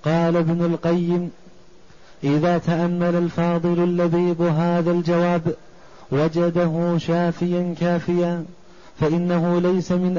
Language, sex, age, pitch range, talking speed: Arabic, male, 30-49, 170-175 Hz, 90 wpm